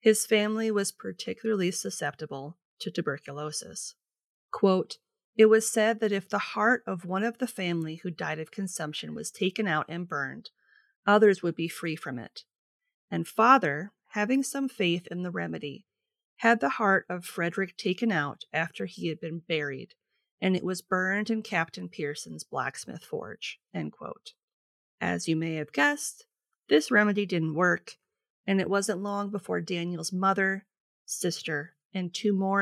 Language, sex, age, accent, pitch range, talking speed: English, female, 30-49, American, 170-220 Hz, 160 wpm